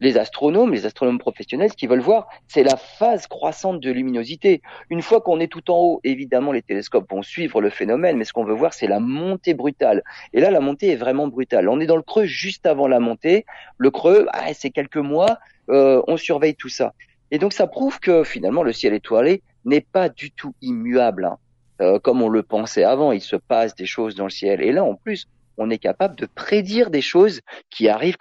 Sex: male